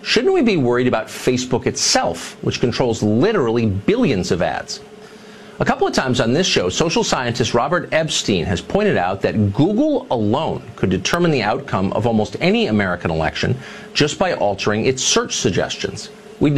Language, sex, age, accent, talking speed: English, male, 50-69, American, 165 wpm